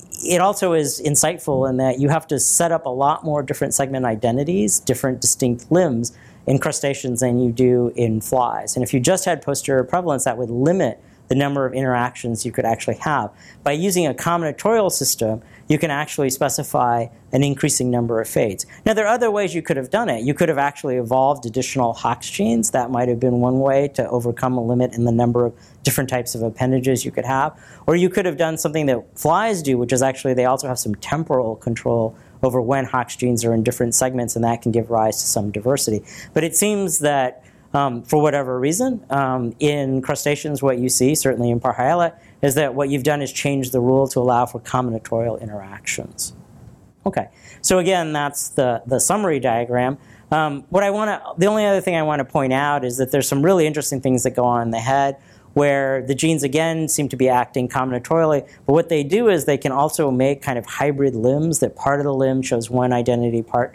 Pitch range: 120-150 Hz